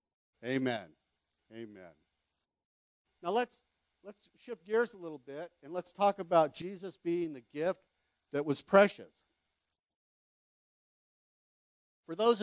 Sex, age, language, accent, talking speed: male, 50-69, English, American, 110 wpm